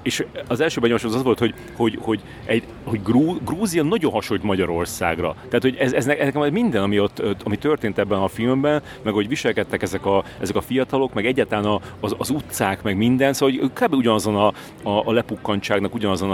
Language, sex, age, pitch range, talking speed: Hungarian, male, 30-49, 100-120 Hz, 190 wpm